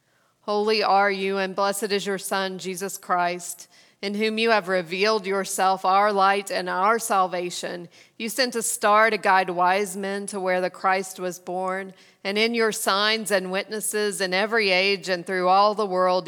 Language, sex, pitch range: English, female, 185-205 Hz